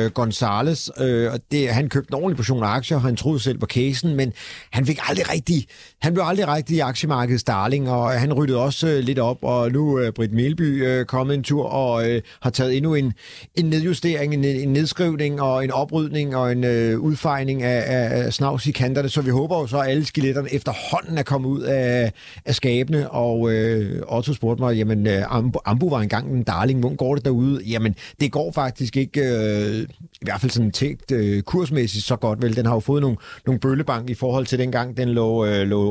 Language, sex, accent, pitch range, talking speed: Danish, male, native, 115-140 Hz, 215 wpm